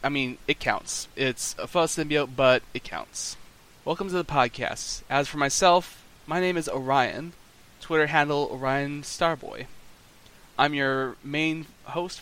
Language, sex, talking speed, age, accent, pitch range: English, male, 145 wpm, 20-39, American, 130-175 Hz